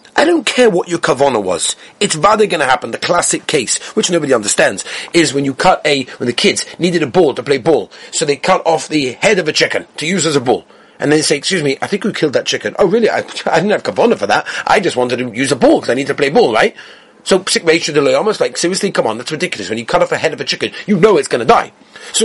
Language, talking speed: English, 285 wpm